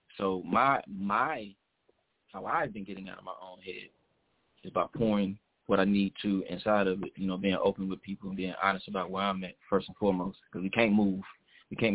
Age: 20-39